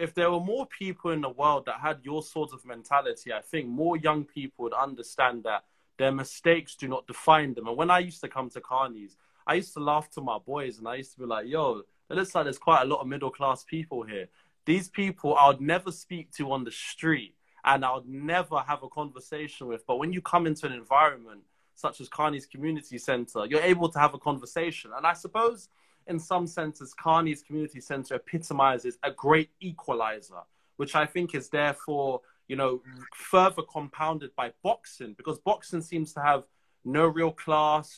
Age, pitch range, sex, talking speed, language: 20-39, 135-165 Hz, male, 205 wpm, English